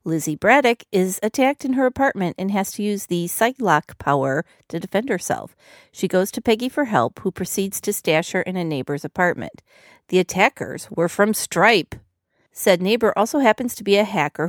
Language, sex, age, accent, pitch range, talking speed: English, female, 40-59, American, 165-225 Hz, 190 wpm